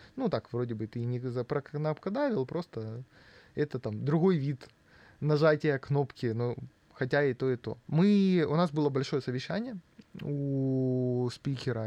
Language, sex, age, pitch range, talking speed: Russian, male, 20-39, 115-150 Hz, 150 wpm